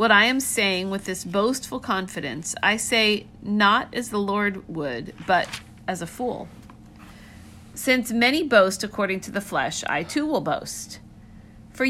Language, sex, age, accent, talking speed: English, female, 50-69, American, 155 wpm